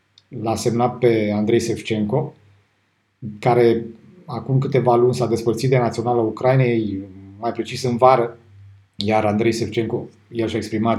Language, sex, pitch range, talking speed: Romanian, male, 110-125 Hz, 130 wpm